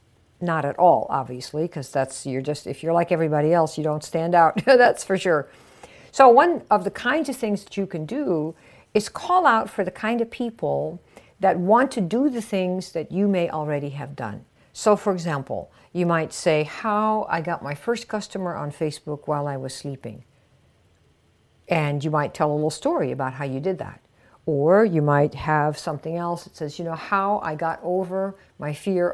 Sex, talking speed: female, 200 wpm